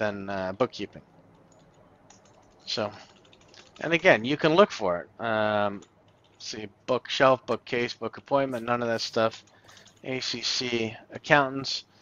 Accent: American